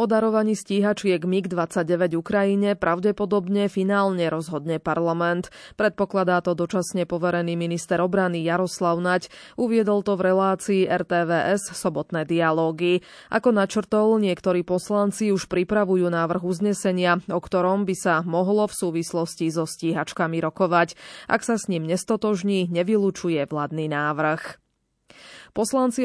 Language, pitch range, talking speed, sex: Slovak, 170-205 Hz, 115 wpm, female